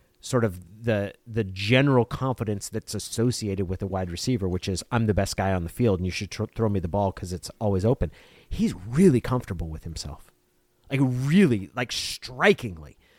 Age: 30-49